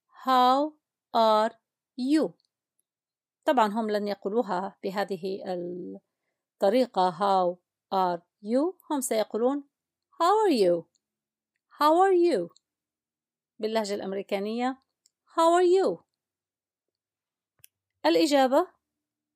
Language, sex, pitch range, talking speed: Arabic, female, 195-270 Hz, 80 wpm